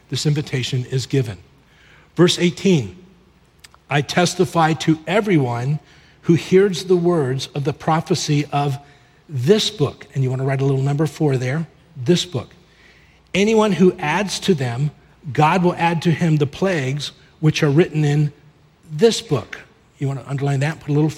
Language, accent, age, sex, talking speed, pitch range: English, American, 40-59, male, 165 wpm, 140-170 Hz